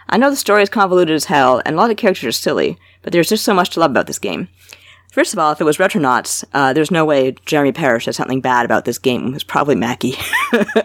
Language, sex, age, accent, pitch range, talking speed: English, female, 30-49, American, 125-165 Hz, 265 wpm